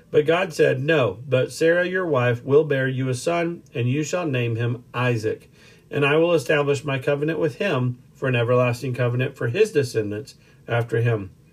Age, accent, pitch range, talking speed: 40-59, American, 125-160 Hz, 185 wpm